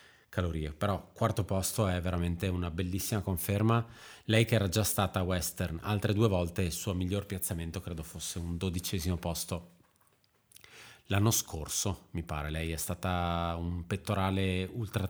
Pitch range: 85-105 Hz